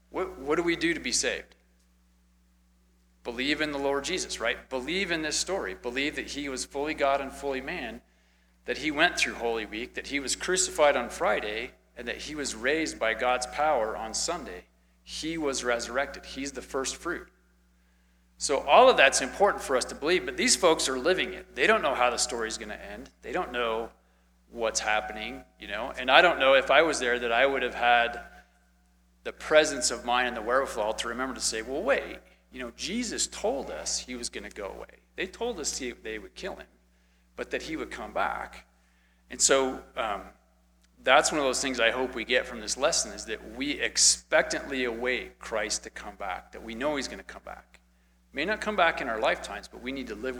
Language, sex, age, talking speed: English, male, 40-59, 215 wpm